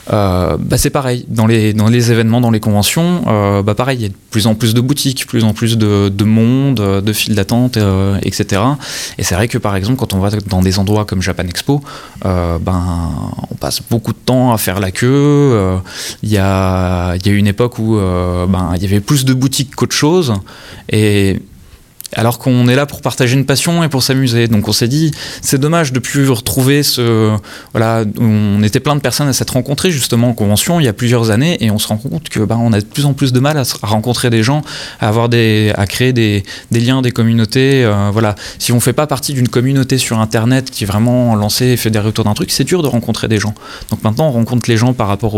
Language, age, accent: French, 20-39, French